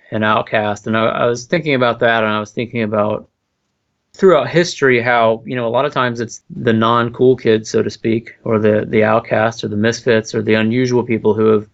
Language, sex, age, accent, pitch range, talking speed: English, male, 30-49, American, 110-120 Hz, 220 wpm